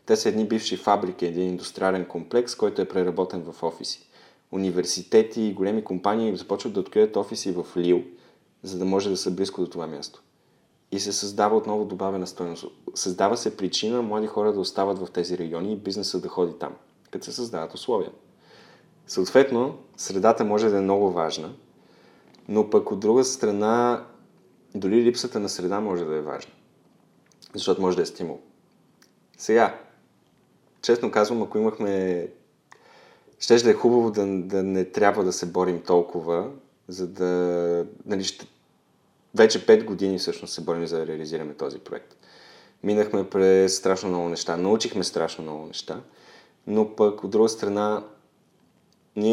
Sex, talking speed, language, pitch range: male, 155 wpm, Bulgarian, 90-105 Hz